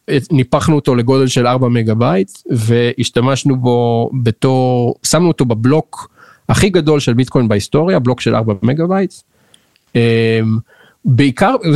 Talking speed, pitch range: 120 wpm, 115-140 Hz